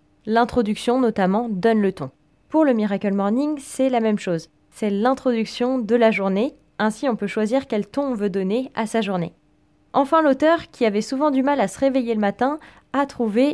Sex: female